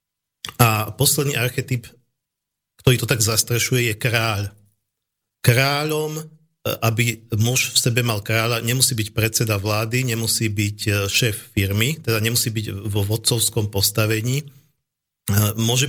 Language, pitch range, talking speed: Slovak, 110-130 Hz, 115 wpm